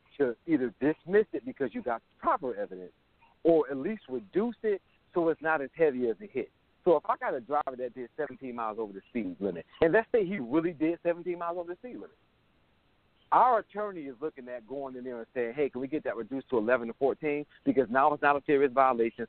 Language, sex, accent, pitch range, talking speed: English, male, American, 120-170 Hz, 235 wpm